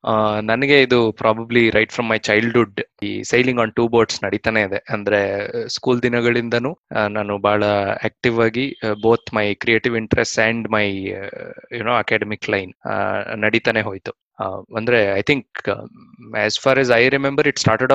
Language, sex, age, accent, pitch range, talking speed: Kannada, male, 20-39, native, 105-120 Hz, 160 wpm